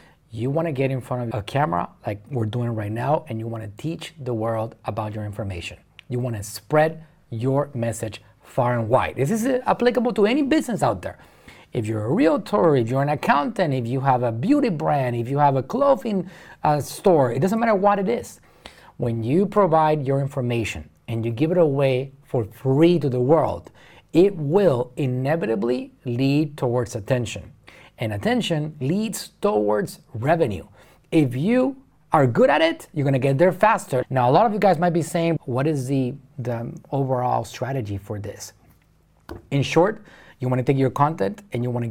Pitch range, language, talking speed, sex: 120-160 Hz, English, 185 wpm, male